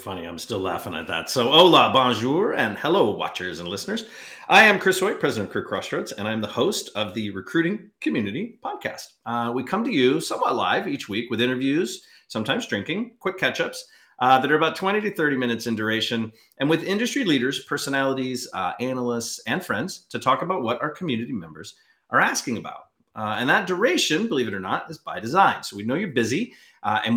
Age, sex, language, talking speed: 40-59, male, English, 210 wpm